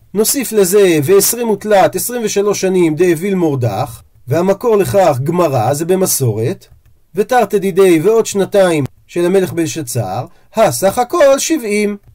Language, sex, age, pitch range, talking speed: Hebrew, male, 40-59, 145-225 Hz, 120 wpm